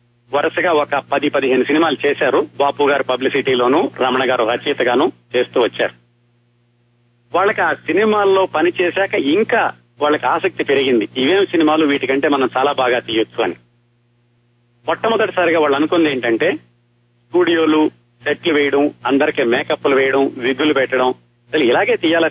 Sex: male